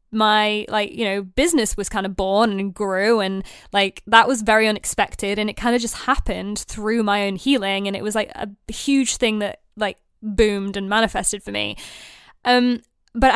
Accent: British